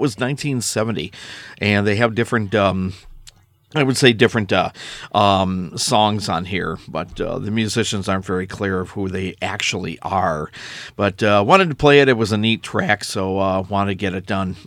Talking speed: 190 wpm